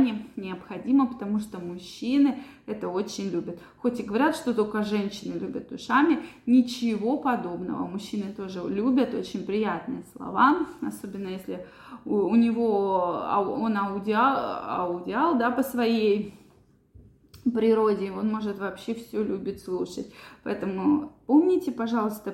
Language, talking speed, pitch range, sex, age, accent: Russian, 115 wpm, 210-265 Hz, female, 20-39, native